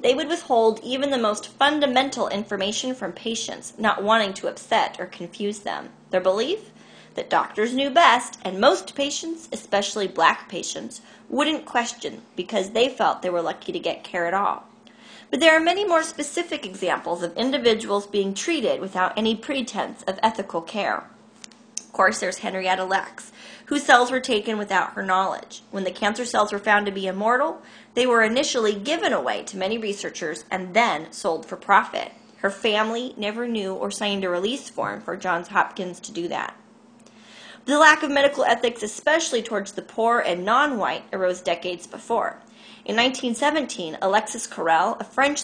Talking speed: 170 wpm